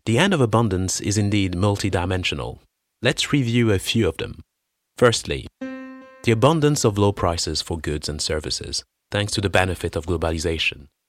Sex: male